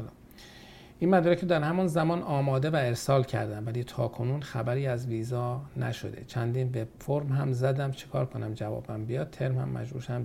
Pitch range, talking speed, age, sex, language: 110-130 Hz, 175 wpm, 50-69, male, Persian